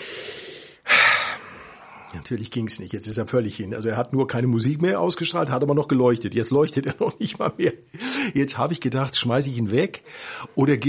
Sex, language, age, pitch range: male, German, 50-69, 115-140 Hz